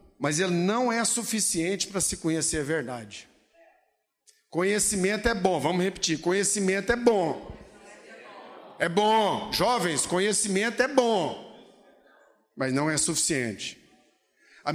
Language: Portuguese